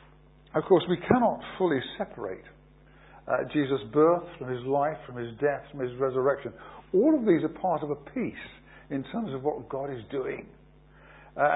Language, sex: English, male